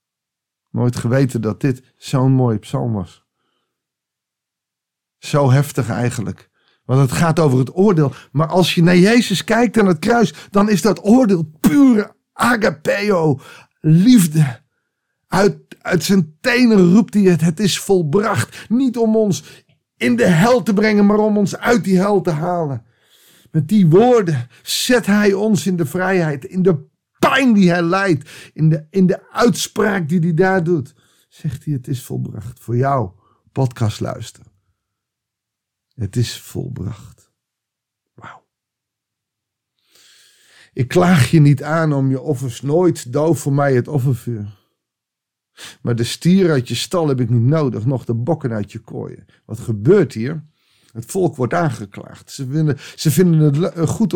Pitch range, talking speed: 125-185 Hz, 155 wpm